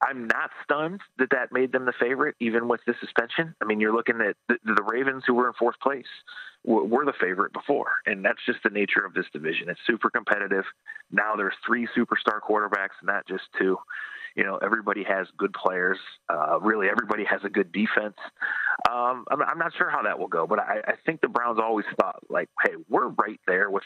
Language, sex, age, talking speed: English, male, 30-49, 215 wpm